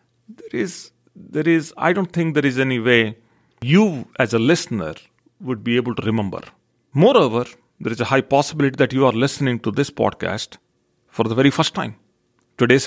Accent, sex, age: Indian, male, 40-59